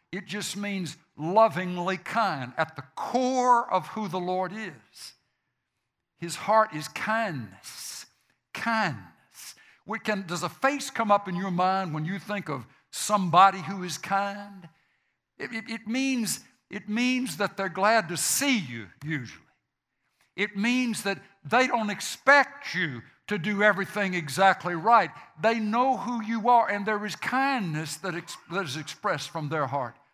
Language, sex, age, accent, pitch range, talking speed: English, male, 60-79, American, 150-220 Hz, 155 wpm